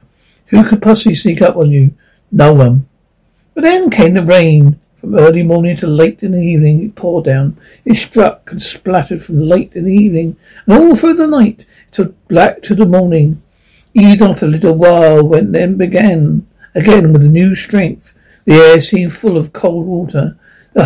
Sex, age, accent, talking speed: male, 60-79, British, 185 wpm